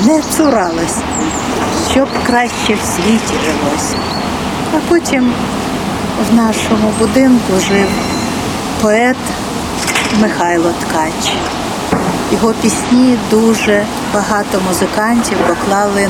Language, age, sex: Ukrainian, 50-69, female